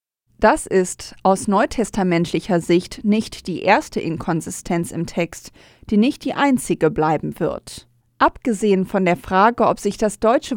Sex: female